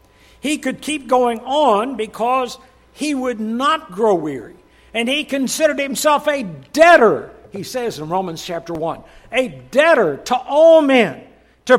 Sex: male